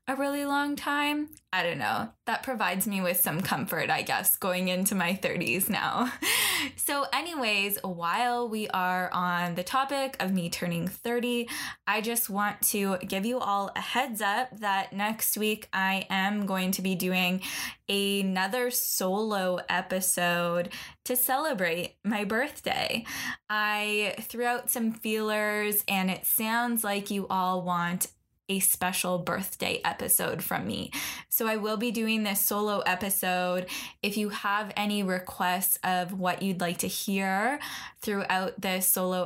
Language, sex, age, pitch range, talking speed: English, female, 10-29, 185-220 Hz, 150 wpm